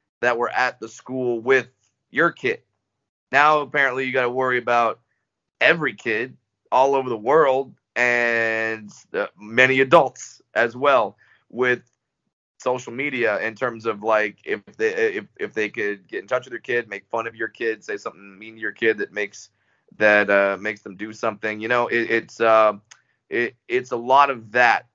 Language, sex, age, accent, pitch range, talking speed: English, male, 30-49, American, 110-125 Hz, 185 wpm